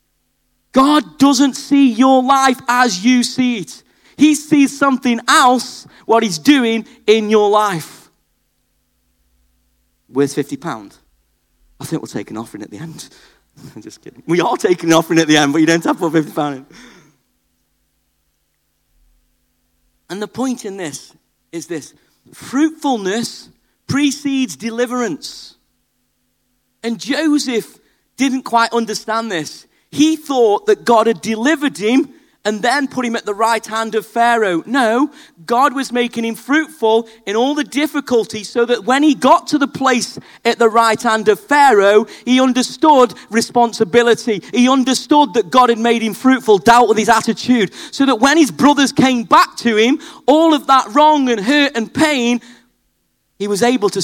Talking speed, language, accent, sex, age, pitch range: 160 wpm, English, British, male, 40-59, 210-270 Hz